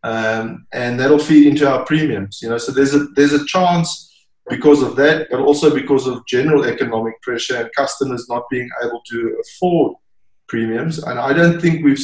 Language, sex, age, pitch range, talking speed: English, male, 20-39, 115-145 Hz, 190 wpm